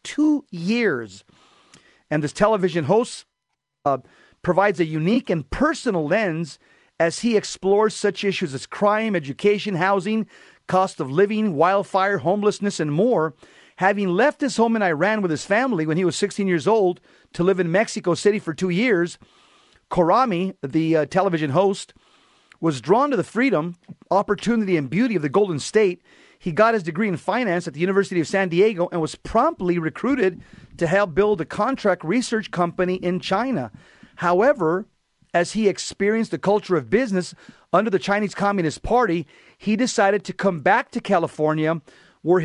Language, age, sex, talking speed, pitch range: English, 40-59, male, 165 wpm, 170-210 Hz